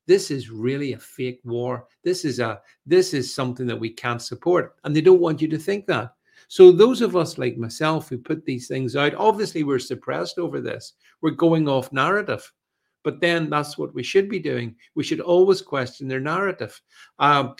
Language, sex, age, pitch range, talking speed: English, male, 50-69, 125-175 Hz, 200 wpm